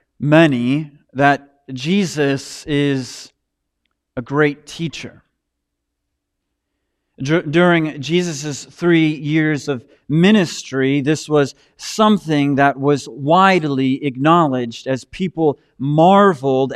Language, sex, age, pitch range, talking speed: English, male, 40-59, 140-185 Hz, 80 wpm